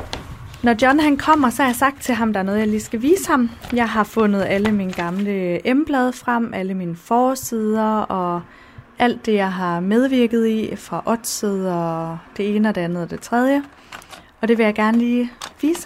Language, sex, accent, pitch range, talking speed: Danish, female, native, 175-230 Hz, 200 wpm